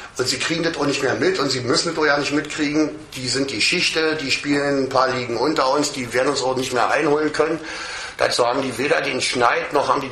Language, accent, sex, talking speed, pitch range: German, German, male, 260 wpm, 130-160 Hz